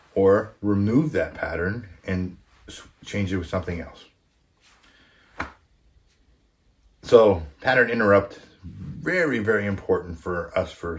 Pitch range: 85-100 Hz